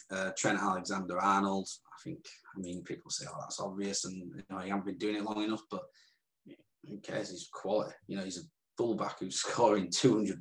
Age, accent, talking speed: 20-39, British, 200 wpm